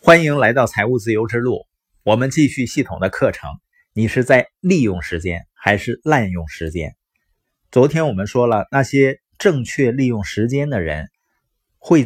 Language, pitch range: Chinese, 100-140 Hz